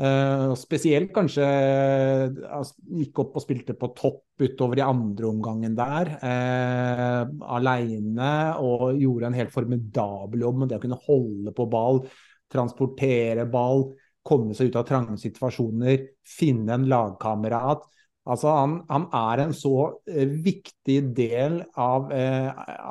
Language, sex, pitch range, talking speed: English, male, 120-140 Hz, 130 wpm